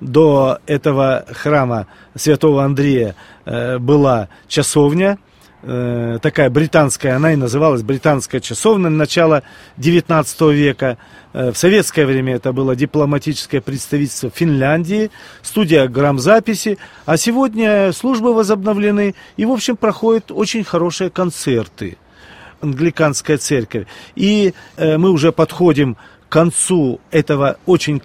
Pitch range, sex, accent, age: 130-170 Hz, male, native, 40-59